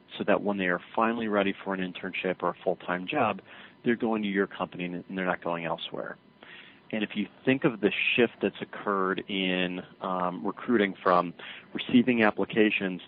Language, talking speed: English, 180 wpm